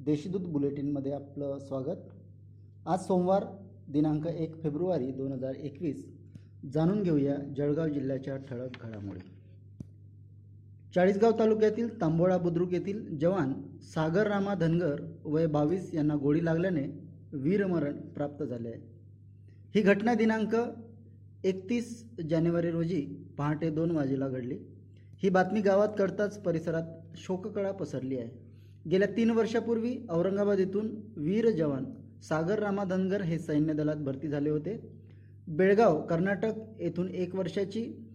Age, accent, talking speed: 20-39, native, 115 wpm